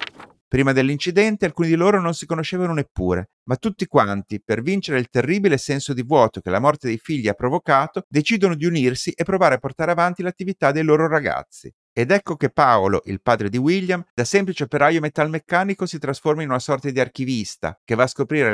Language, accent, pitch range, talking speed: Italian, native, 120-170 Hz, 195 wpm